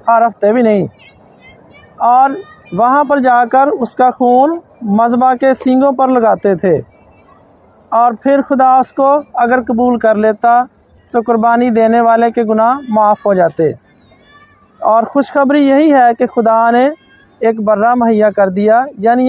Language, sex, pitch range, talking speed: Hindi, male, 225-270 Hz, 145 wpm